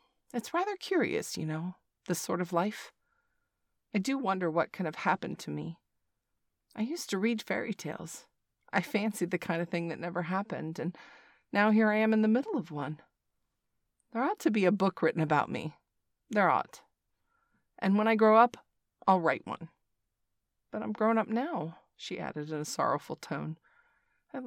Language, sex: English, female